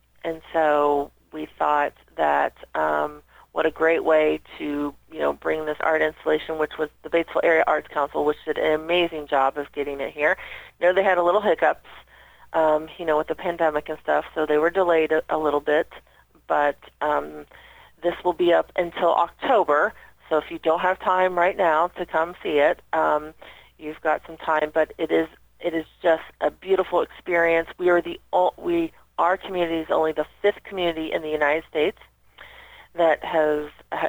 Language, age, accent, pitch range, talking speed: English, 40-59, American, 155-180 Hz, 190 wpm